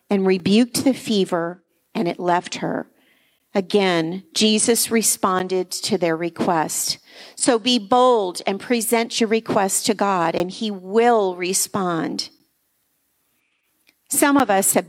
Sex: female